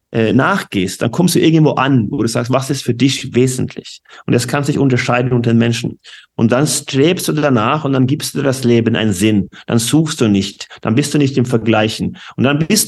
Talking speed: 225 wpm